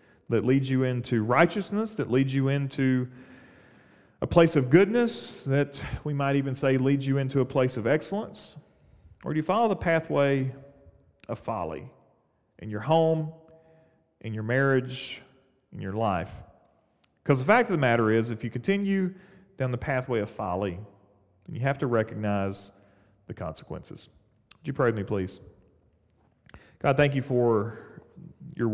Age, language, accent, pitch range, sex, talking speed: 40-59, English, American, 110-135 Hz, male, 155 wpm